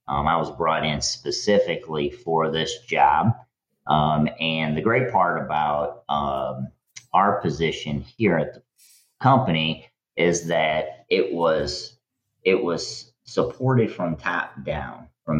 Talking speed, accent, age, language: 130 wpm, American, 30-49, English